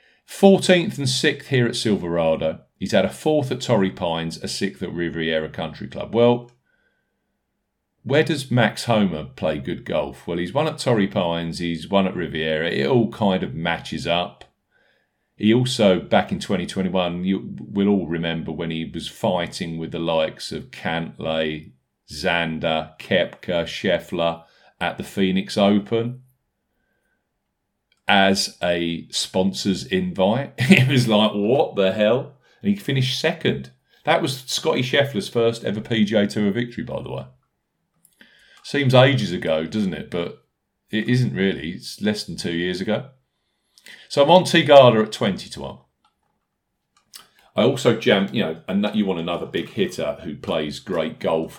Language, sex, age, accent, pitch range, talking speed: English, male, 40-59, British, 85-125 Hz, 155 wpm